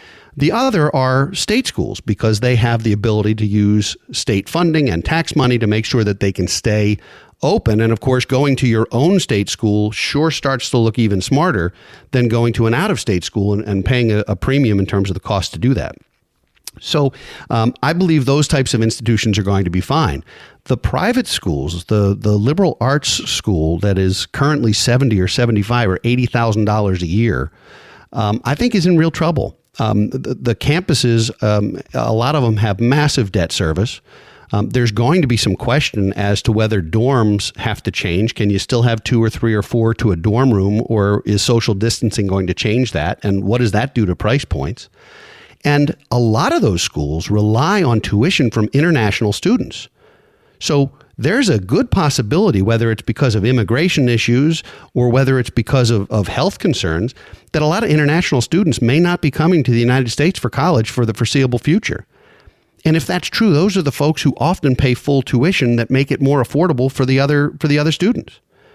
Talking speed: 200 wpm